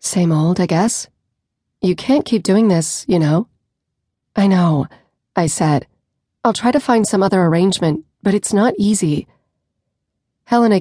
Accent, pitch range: American, 165-200 Hz